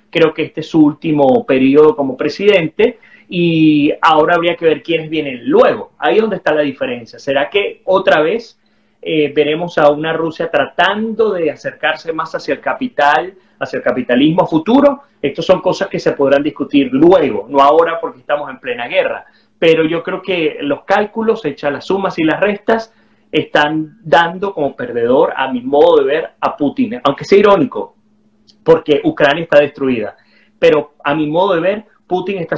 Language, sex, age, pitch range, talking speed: Spanish, male, 30-49, 155-235 Hz, 175 wpm